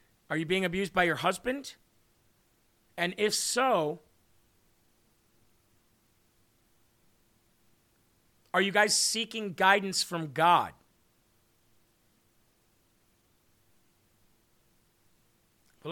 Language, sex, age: English, male, 40-59